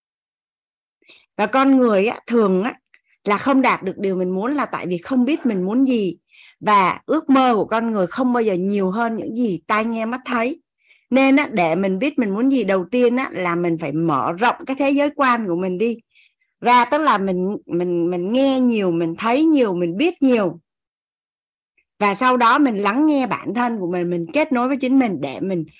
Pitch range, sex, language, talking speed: 185-260 Hz, female, Vietnamese, 205 wpm